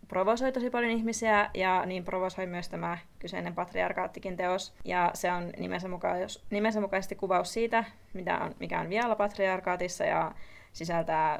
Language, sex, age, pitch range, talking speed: Finnish, female, 20-39, 175-200 Hz, 140 wpm